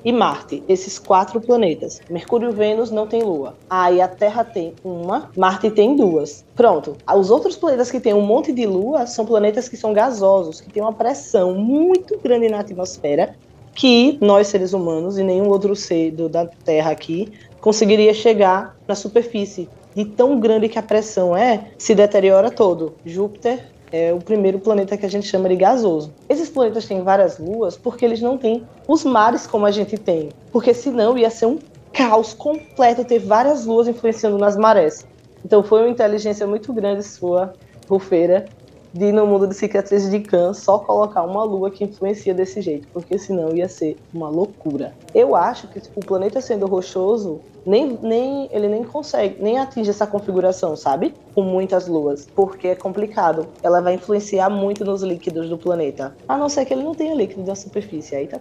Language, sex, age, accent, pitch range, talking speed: Portuguese, female, 20-39, Brazilian, 185-230 Hz, 185 wpm